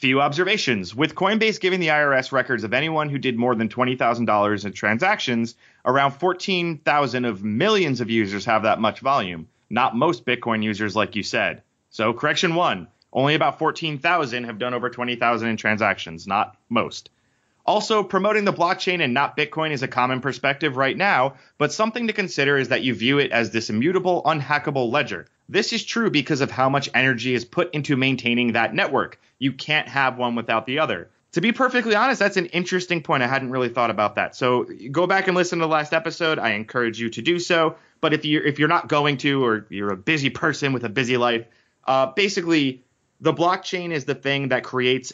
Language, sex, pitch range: English, male, 120-160 Hz